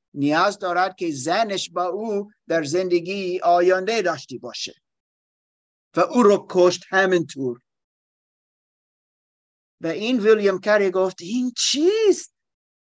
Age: 50-69